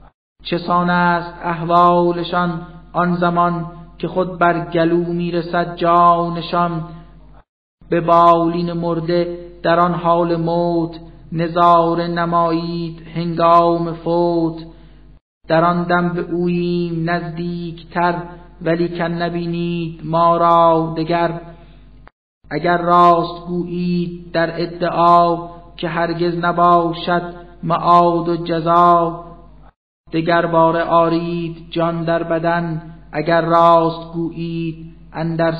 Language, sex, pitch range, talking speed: Persian, male, 170-175 Hz, 95 wpm